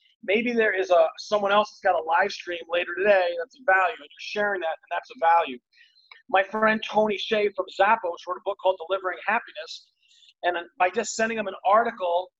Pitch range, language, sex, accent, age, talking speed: 185-225 Hz, English, male, American, 30-49, 215 wpm